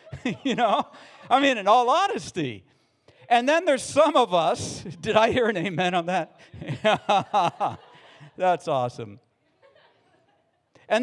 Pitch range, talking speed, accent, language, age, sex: 130-195 Hz, 125 wpm, American, English, 50-69, male